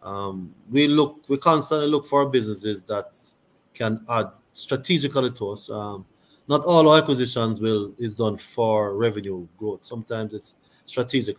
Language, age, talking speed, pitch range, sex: English, 30-49, 140 wpm, 100-120 Hz, male